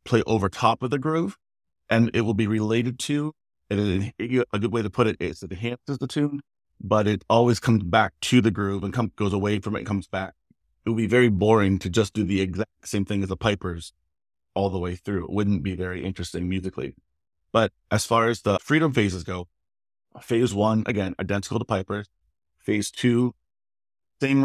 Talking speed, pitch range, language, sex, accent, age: 200 wpm, 95-115 Hz, English, male, American, 30-49